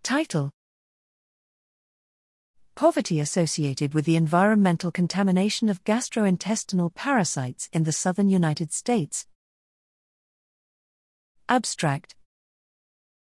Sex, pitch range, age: female, 160-215 Hz, 40-59